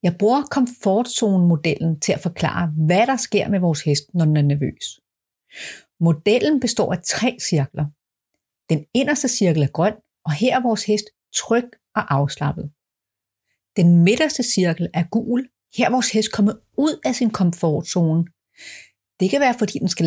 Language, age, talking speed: Danish, 30-49, 165 wpm